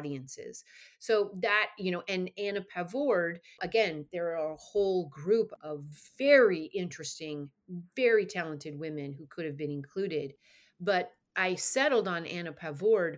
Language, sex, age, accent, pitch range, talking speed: English, female, 30-49, American, 160-210 Hz, 140 wpm